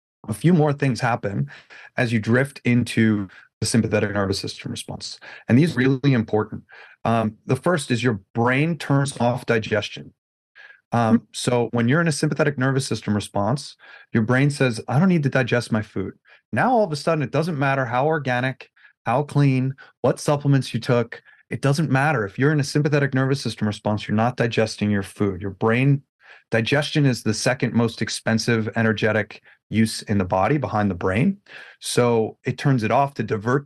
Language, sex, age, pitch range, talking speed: English, male, 30-49, 110-135 Hz, 185 wpm